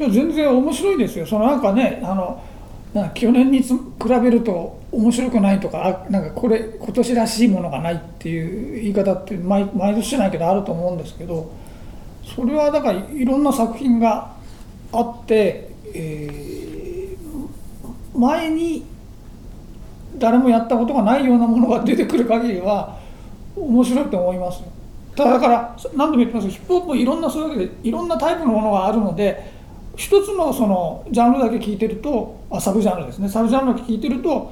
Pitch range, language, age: 200-265 Hz, Japanese, 40-59